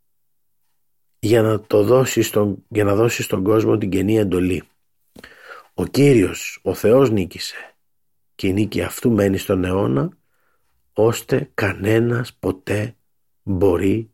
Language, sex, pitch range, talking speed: Greek, male, 90-105 Hz, 105 wpm